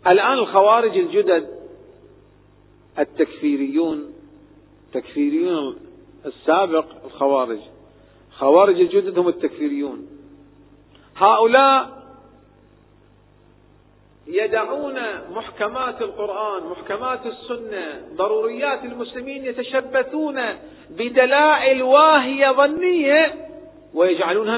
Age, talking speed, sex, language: 40-59, 60 wpm, male, Arabic